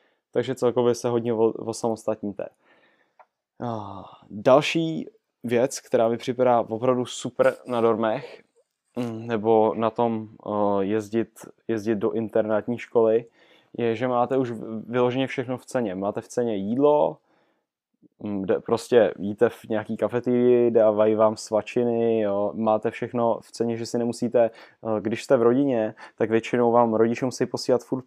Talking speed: 130 wpm